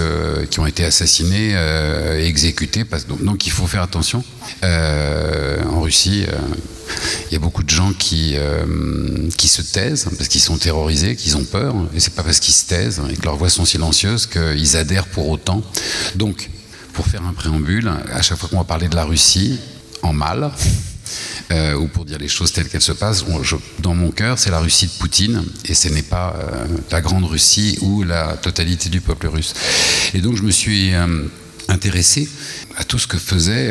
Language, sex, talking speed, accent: French, male, 205 wpm, French